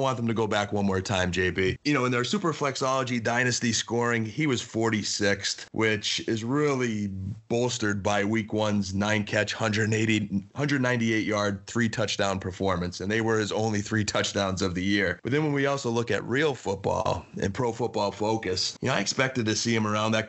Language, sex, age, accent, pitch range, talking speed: English, male, 30-49, American, 105-125 Hz, 200 wpm